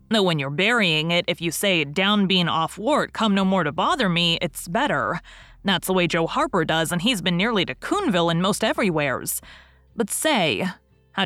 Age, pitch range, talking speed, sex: 30-49, 155-195 Hz, 205 wpm, female